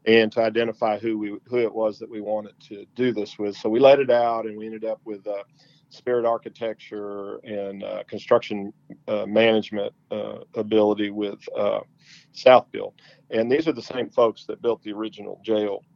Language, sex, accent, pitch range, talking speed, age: English, male, American, 105-120 Hz, 185 wpm, 50-69